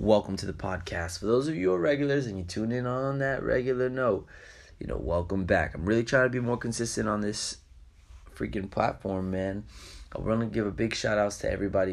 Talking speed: 220 wpm